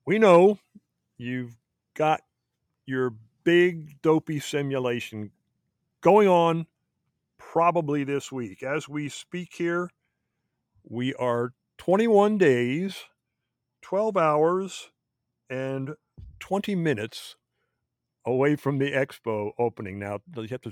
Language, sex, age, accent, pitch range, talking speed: English, male, 50-69, American, 115-155 Hz, 100 wpm